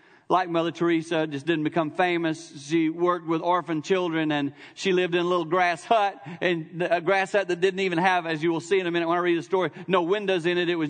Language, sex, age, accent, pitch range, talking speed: English, male, 40-59, American, 150-180 Hz, 255 wpm